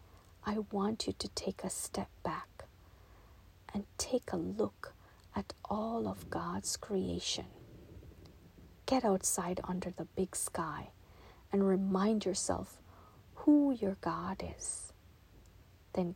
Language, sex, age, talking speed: English, female, 40-59, 115 wpm